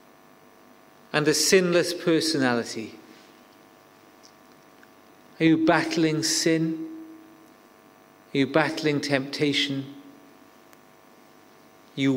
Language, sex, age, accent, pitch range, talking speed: English, male, 40-59, British, 140-190 Hz, 65 wpm